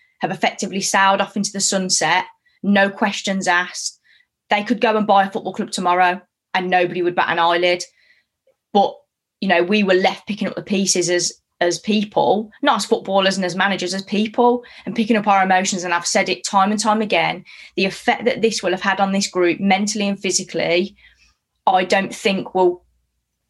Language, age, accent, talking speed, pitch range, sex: English, 20-39, British, 195 wpm, 180-210 Hz, female